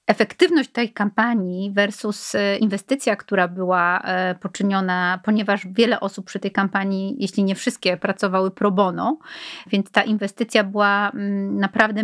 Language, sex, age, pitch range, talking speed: Polish, female, 30-49, 200-245 Hz, 125 wpm